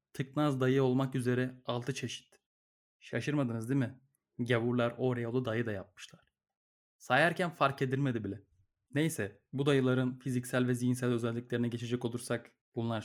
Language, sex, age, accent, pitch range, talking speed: Turkish, male, 30-49, native, 120-145 Hz, 135 wpm